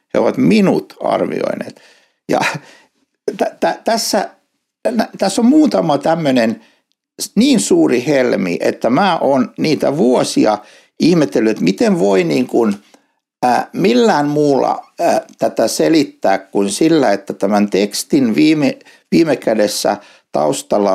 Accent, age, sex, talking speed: native, 60-79, male, 120 wpm